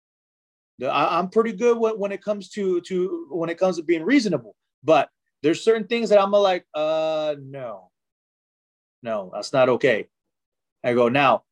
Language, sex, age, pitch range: English, male, 30-49, 160-220 Hz